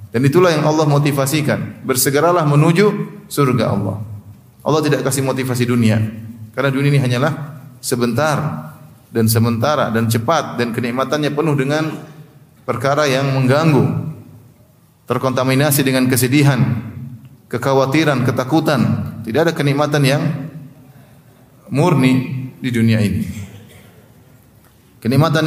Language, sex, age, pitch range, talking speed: Indonesian, male, 30-49, 120-145 Hz, 105 wpm